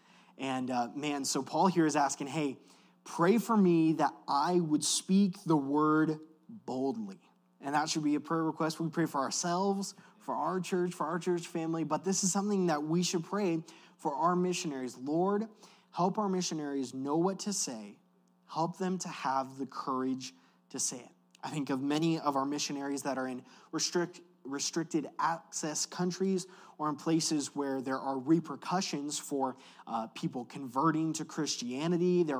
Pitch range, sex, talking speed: 140-185 Hz, male, 170 wpm